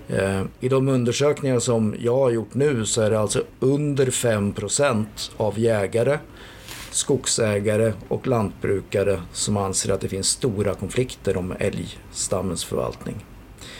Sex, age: male, 50-69